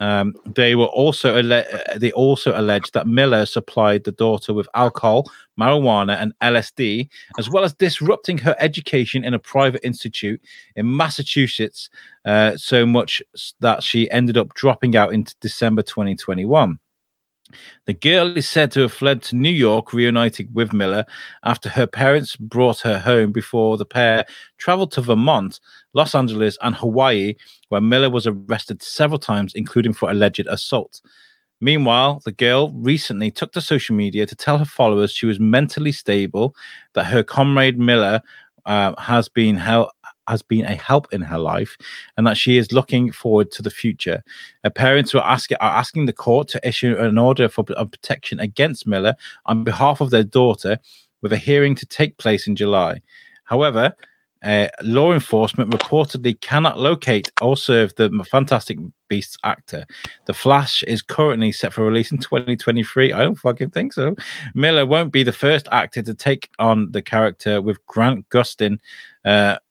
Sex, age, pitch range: male, 30-49, 110-135 Hz